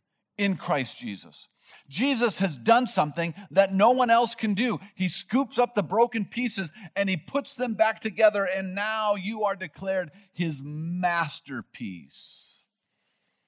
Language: English